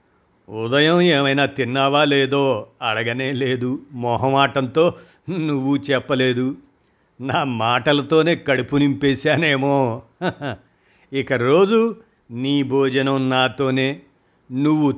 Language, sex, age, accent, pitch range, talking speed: Telugu, male, 50-69, native, 115-145 Hz, 70 wpm